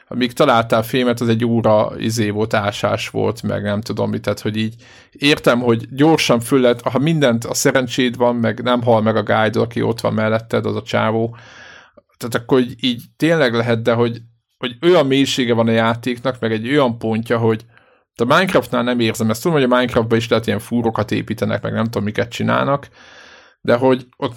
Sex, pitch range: male, 110-125 Hz